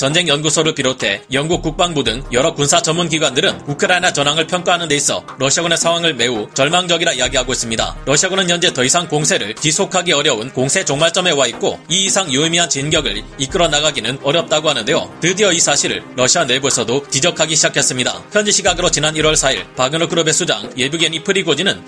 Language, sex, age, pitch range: Korean, male, 30-49, 140-175 Hz